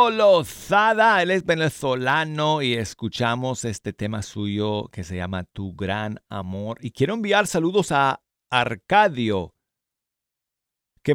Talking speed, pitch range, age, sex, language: 120 wpm, 105-150 Hz, 50-69, male, Spanish